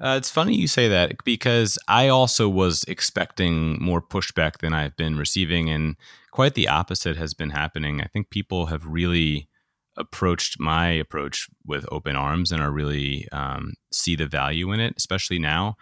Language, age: English, 30-49